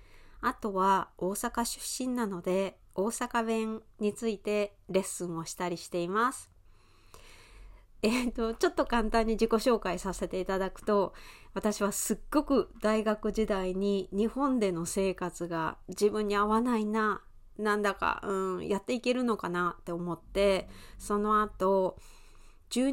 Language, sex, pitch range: Japanese, female, 185-225 Hz